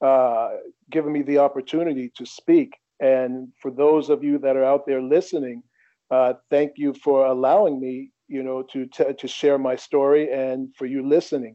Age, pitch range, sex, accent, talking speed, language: 50-69, 135-170 Hz, male, American, 180 wpm, English